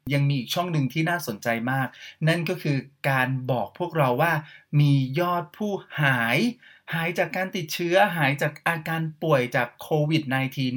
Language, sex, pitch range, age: Thai, male, 135-175 Hz, 30-49